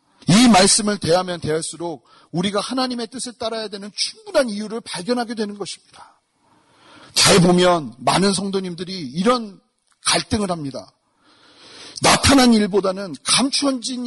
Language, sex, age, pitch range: Korean, male, 40-59, 185-255 Hz